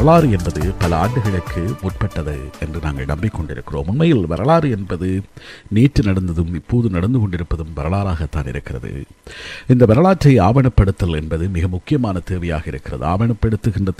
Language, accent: Tamil, native